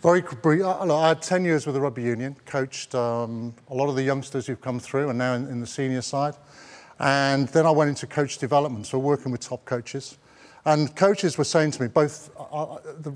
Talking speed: 215 wpm